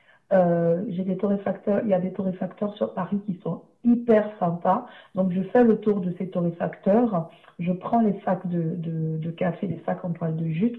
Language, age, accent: French, 50-69, French